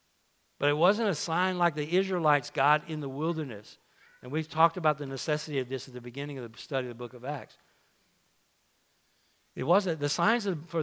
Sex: male